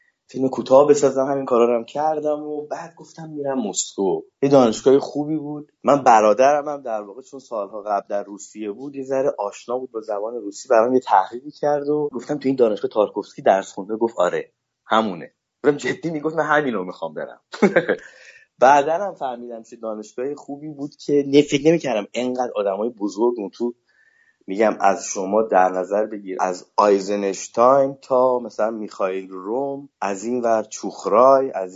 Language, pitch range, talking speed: Persian, 110-150 Hz, 165 wpm